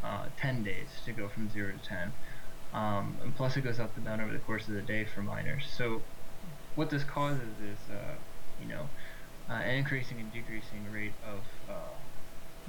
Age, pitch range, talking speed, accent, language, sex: 10-29, 105-125 Hz, 195 wpm, American, English, male